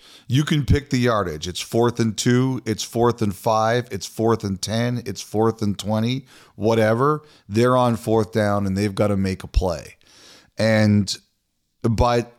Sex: male